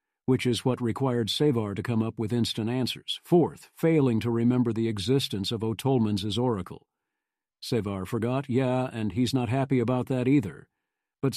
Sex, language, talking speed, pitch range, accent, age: male, English, 165 wpm, 110-130 Hz, American, 50-69